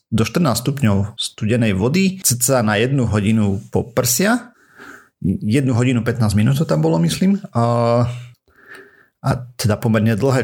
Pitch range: 100-125 Hz